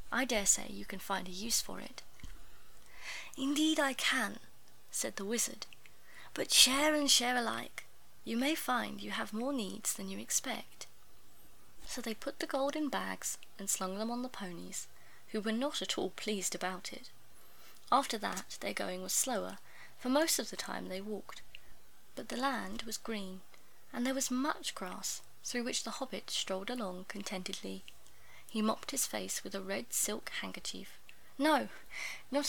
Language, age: English, 20-39